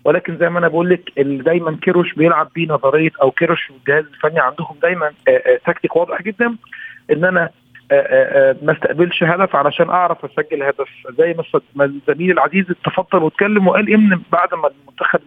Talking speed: 160 wpm